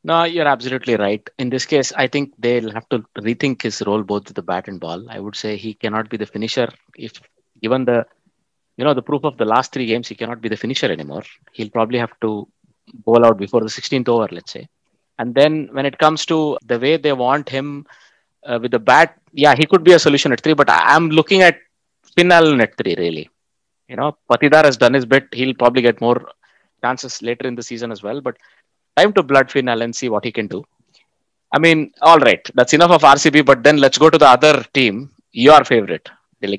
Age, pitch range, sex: 30-49, 120-155 Hz, male